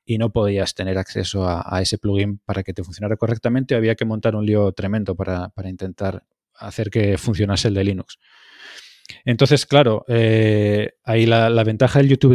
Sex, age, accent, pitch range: male, 20-39, Spanish, 100-125 Hz